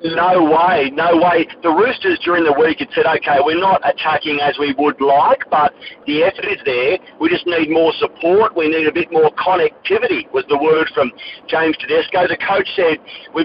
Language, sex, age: English, male, 50-69